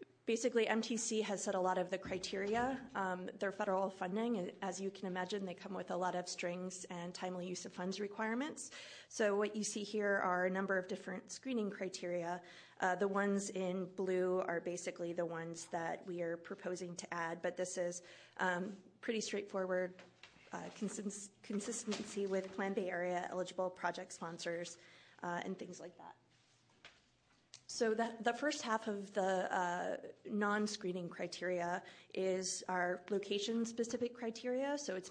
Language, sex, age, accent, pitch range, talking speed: English, female, 20-39, American, 180-205 Hz, 160 wpm